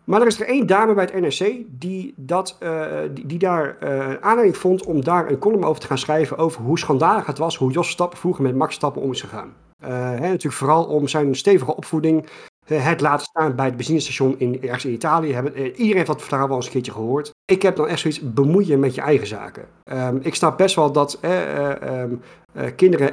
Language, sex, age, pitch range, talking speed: Dutch, male, 50-69, 130-160 Hz, 235 wpm